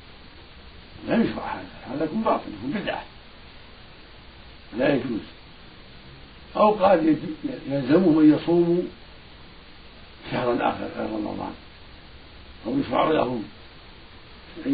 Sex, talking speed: male, 95 wpm